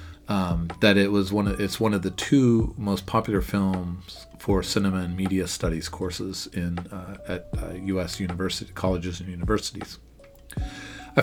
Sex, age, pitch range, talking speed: male, 40-59, 90-100 Hz, 160 wpm